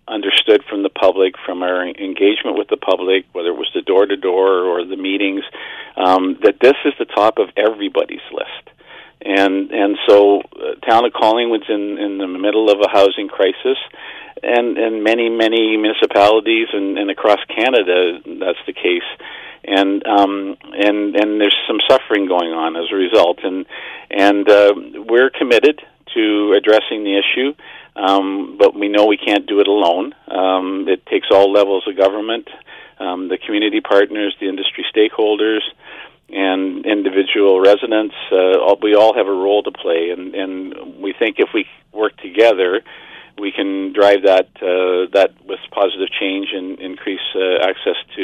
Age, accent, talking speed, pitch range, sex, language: 50-69, American, 165 wpm, 95-140 Hz, male, English